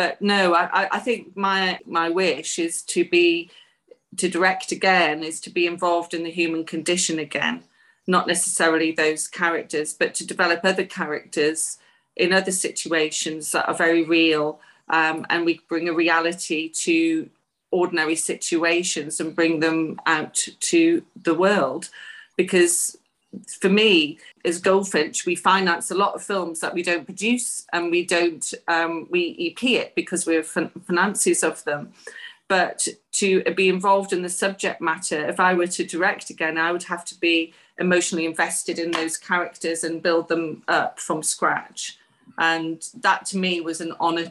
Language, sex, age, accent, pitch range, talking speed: English, female, 40-59, British, 165-190 Hz, 165 wpm